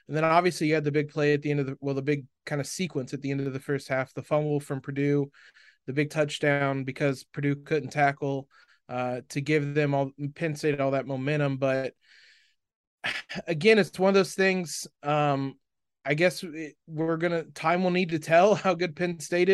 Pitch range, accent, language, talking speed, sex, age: 145-170 Hz, American, English, 210 wpm, male, 20-39